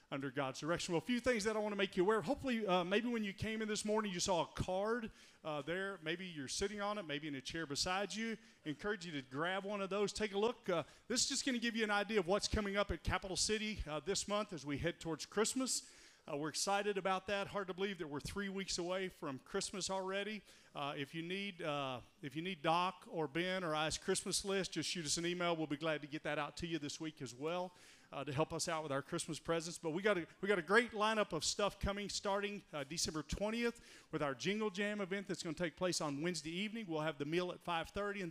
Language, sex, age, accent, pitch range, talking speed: English, male, 40-59, American, 160-205 Hz, 265 wpm